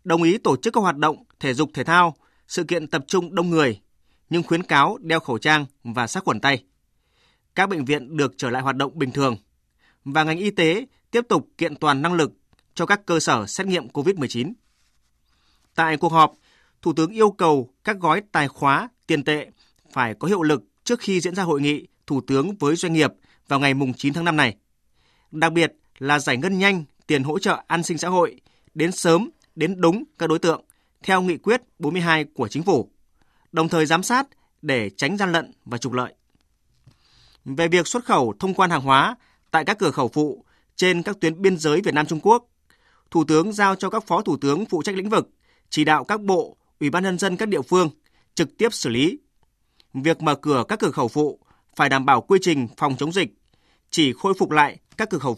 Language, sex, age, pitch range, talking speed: Vietnamese, male, 20-39, 140-180 Hz, 215 wpm